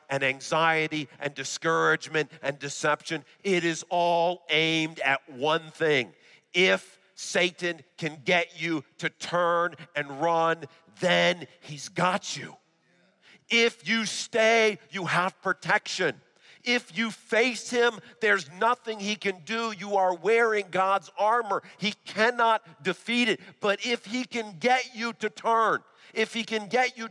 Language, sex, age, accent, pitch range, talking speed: English, male, 50-69, American, 145-215 Hz, 140 wpm